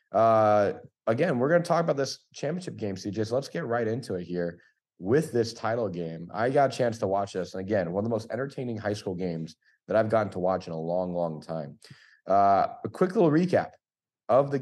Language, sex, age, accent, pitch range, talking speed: English, male, 30-49, American, 95-130 Hz, 230 wpm